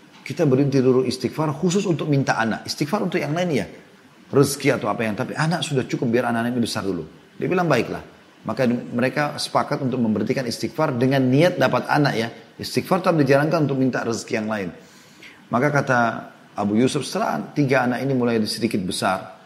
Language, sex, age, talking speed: Indonesian, male, 30-49, 180 wpm